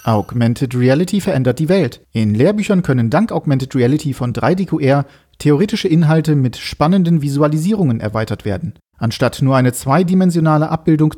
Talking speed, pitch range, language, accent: 135 wpm, 120-165 Hz, German, German